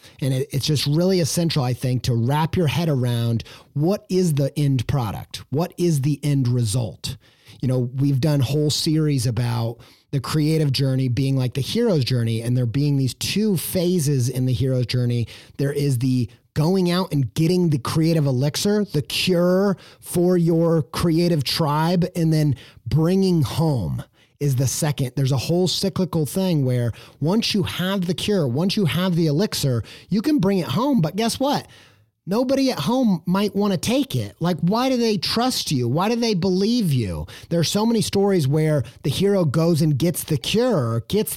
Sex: male